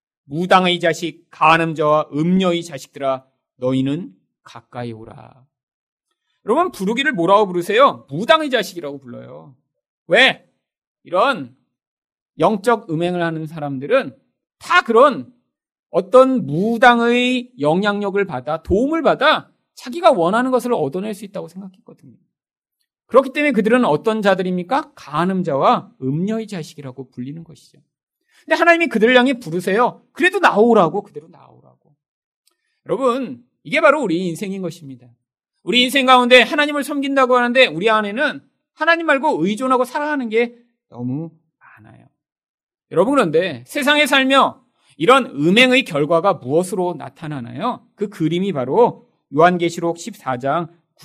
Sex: male